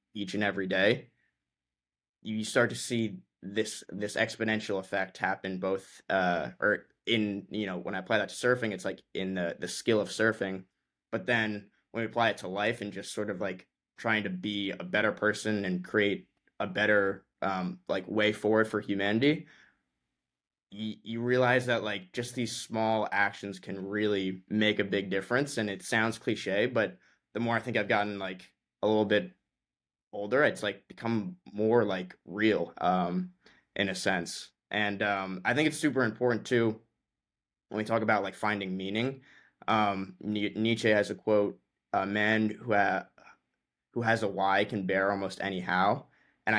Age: 20-39